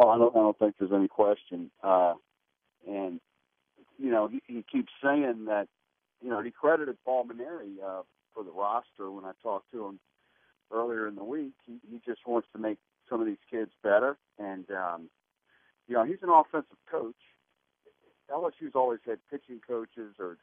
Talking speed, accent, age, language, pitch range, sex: 180 wpm, American, 50-69, English, 95-115 Hz, male